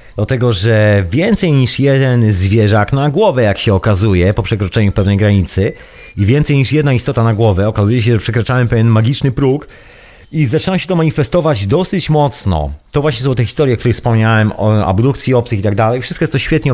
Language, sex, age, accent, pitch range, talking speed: Polish, male, 30-49, native, 105-145 Hz, 195 wpm